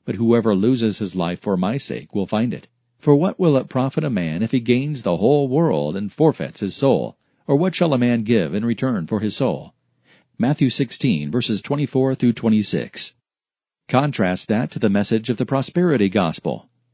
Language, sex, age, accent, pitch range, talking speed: English, male, 40-59, American, 110-135 Hz, 185 wpm